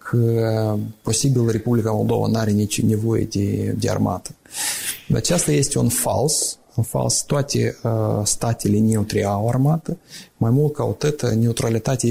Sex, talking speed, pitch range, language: male, 135 wpm, 110-130 Hz, Romanian